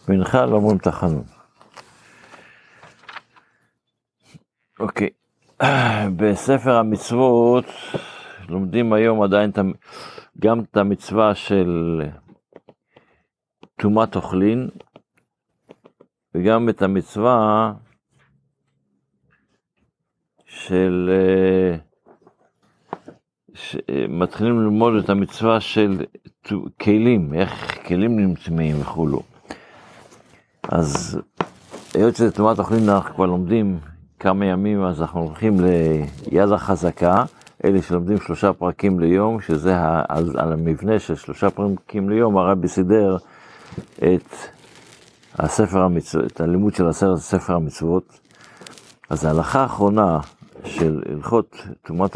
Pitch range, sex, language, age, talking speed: 90-110 Hz, male, Hebrew, 60-79, 85 wpm